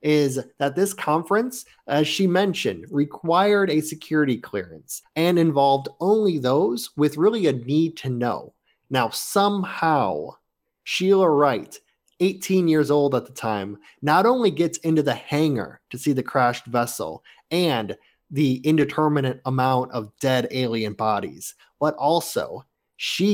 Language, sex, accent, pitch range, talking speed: English, male, American, 130-165 Hz, 135 wpm